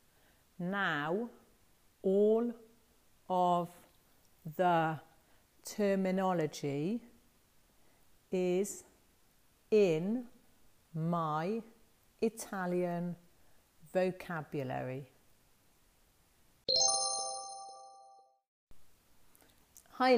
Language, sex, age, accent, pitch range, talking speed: English, female, 40-59, British, 150-200 Hz, 35 wpm